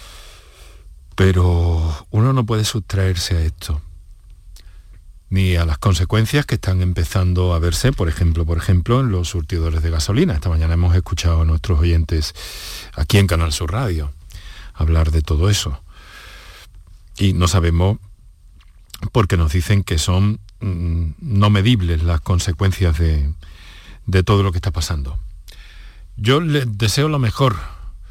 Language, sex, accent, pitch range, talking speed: Spanish, male, Spanish, 85-110 Hz, 140 wpm